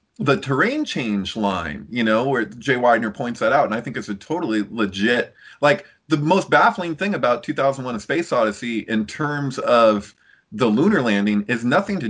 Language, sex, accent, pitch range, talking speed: English, male, American, 105-170 Hz, 190 wpm